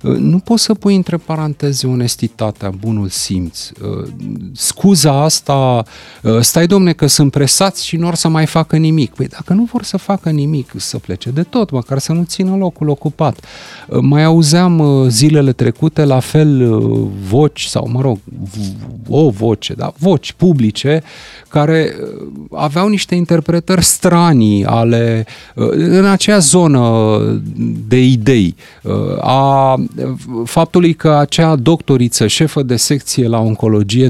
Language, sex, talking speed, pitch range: Romanian, male, 135 wpm, 120-165 Hz